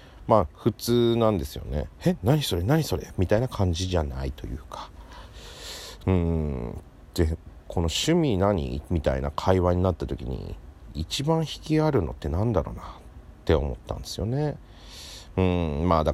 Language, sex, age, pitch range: Japanese, male, 40-59, 75-100 Hz